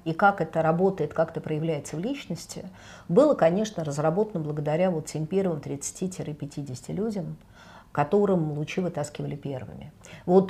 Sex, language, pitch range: female, Russian, 160-215 Hz